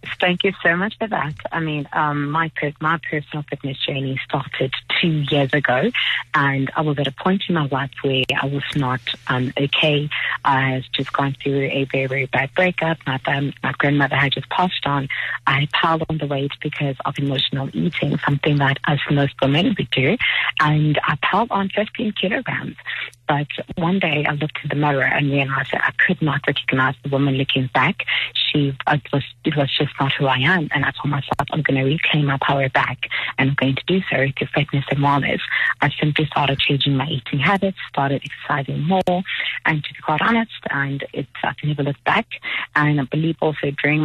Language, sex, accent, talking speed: English, female, American, 205 wpm